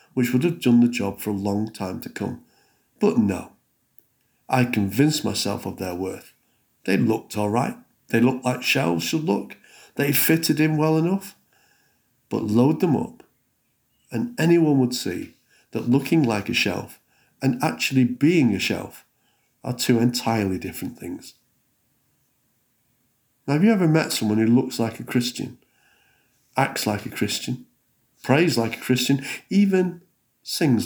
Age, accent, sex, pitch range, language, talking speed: 50-69, British, male, 110-135 Hz, English, 155 wpm